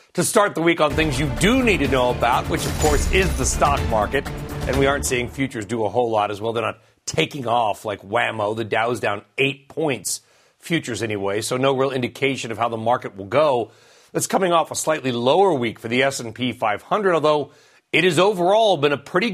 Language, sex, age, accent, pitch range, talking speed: English, male, 40-59, American, 120-160 Hz, 215 wpm